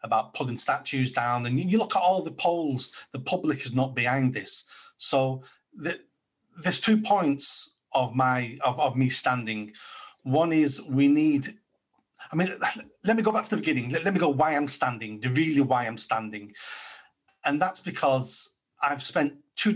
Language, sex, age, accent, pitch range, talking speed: English, male, 30-49, British, 125-155 Hz, 180 wpm